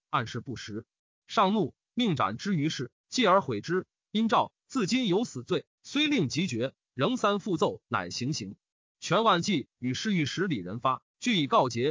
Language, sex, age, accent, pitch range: Chinese, male, 30-49, native, 145-215 Hz